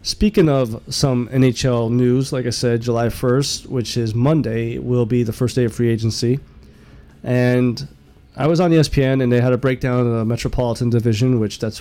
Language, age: English, 20-39